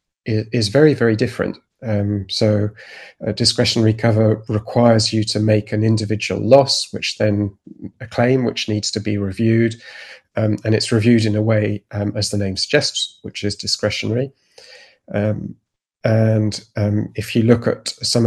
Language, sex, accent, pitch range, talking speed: English, male, British, 105-115 Hz, 155 wpm